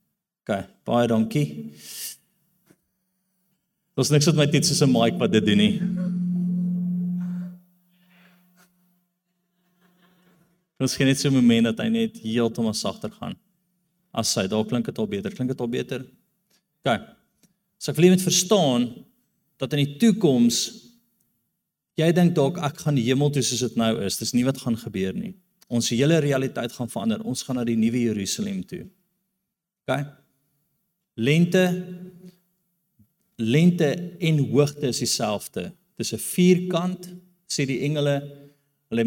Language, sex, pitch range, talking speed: English, male, 125-185 Hz, 150 wpm